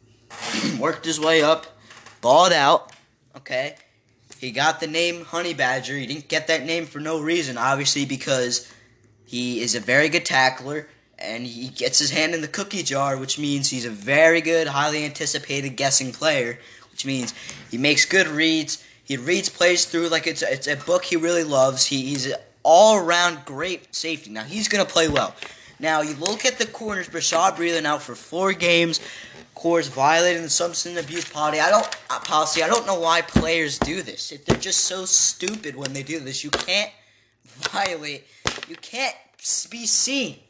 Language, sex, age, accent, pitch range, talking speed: English, male, 10-29, American, 135-175 Hz, 180 wpm